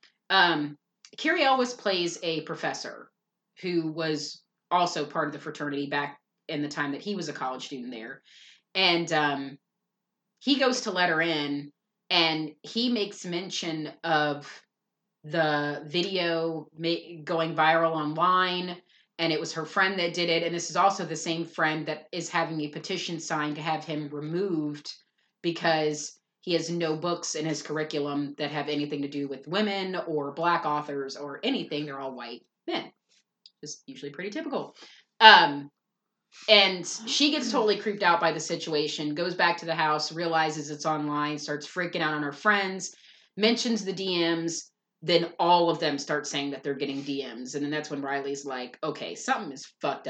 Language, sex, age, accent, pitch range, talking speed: English, female, 30-49, American, 150-185 Hz, 170 wpm